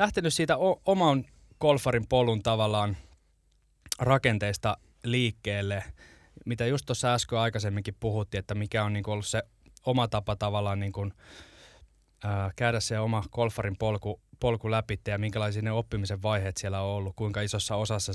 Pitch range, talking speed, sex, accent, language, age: 100-115 Hz, 130 wpm, male, native, Finnish, 20-39